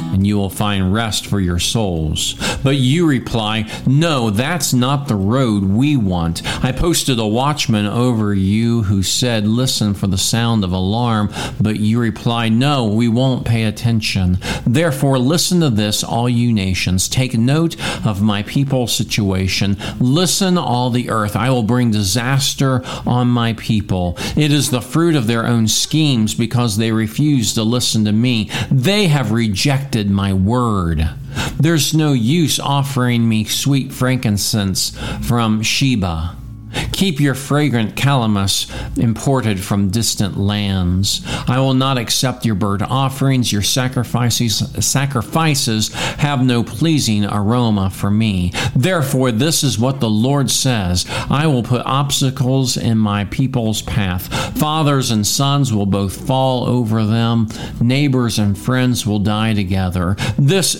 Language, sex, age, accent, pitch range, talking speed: English, male, 50-69, American, 105-135 Hz, 145 wpm